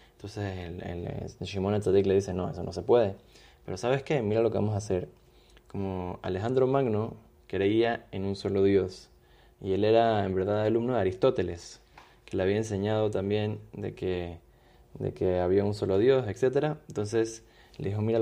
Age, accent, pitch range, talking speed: 20-39, Argentinian, 95-110 Hz, 190 wpm